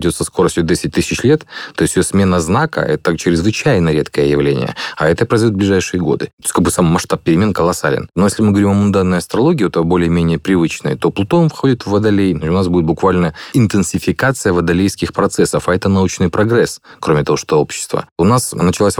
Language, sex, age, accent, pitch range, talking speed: Russian, male, 30-49, native, 85-100 Hz, 195 wpm